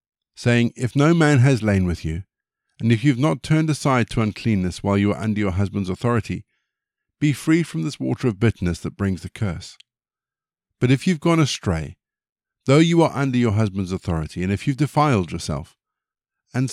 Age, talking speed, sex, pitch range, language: 50-69, 195 wpm, male, 95-130 Hz, English